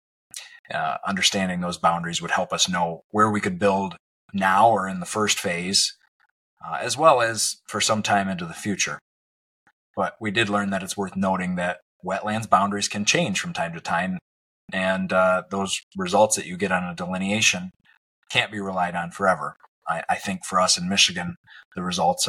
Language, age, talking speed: English, 30-49, 185 wpm